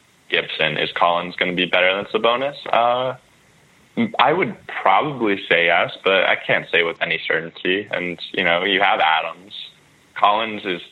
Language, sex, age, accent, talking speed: English, male, 20-39, American, 165 wpm